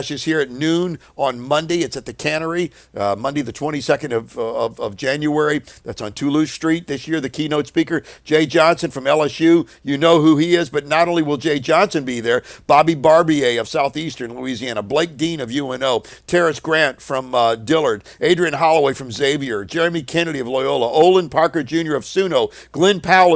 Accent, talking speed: American, 190 wpm